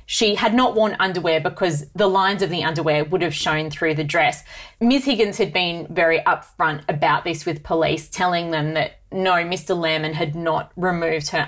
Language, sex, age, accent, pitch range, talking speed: English, female, 30-49, Australian, 160-195 Hz, 195 wpm